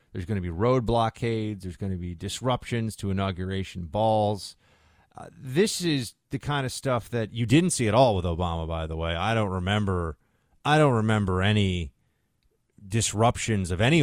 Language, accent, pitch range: English, American, 90-115 Hz